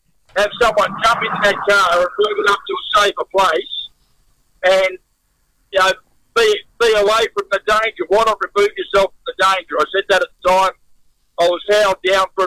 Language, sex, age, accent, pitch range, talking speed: English, male, 50-69, American, 195-245 Hz, 195 wpm